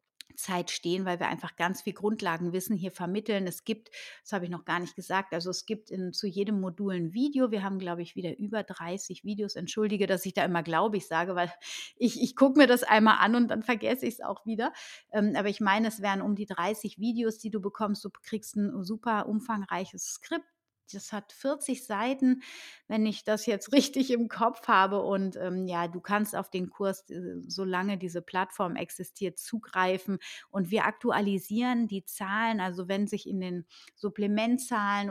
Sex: female